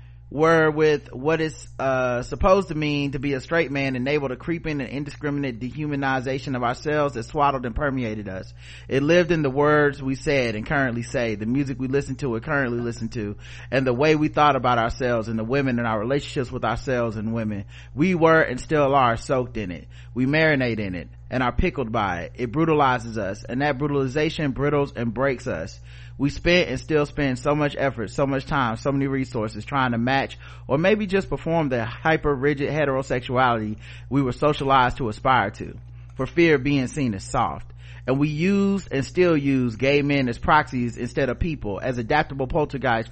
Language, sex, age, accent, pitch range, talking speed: English, male, 30-49, American, 120-145 Hz, 200 wpm